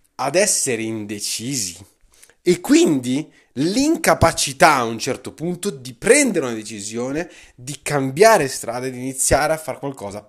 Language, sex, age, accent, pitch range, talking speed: Italian, male, 20-39, native, 115-160 Hz, 130 wpm